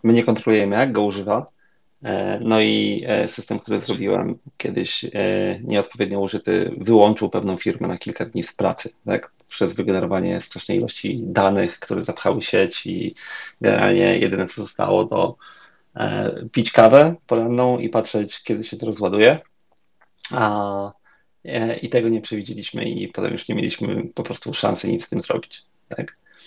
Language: Polish